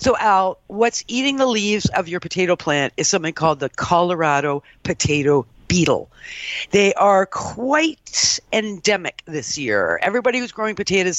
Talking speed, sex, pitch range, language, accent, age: 145 wpm, female, 155-210 Hz, English, American, 50-69